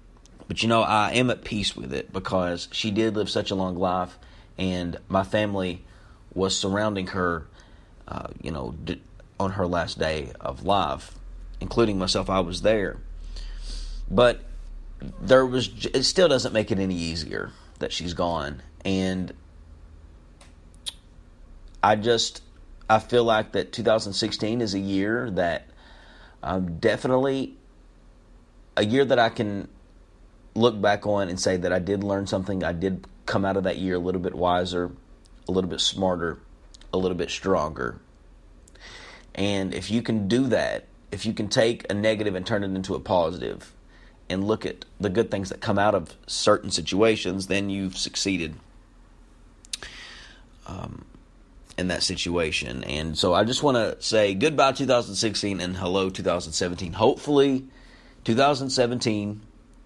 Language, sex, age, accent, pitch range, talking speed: English, male, 30-49, American, 85-110 Hz, 150 wpm